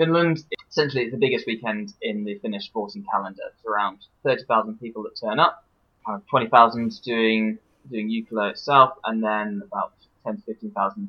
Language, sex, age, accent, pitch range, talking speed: English, male, 20-39, British, 105-140 Hz, 155 wpm